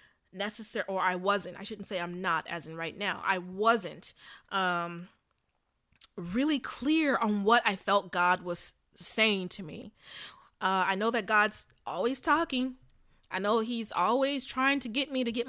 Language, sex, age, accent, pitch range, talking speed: English, female, 20-39, American, 190-245 Hz, 170 wpm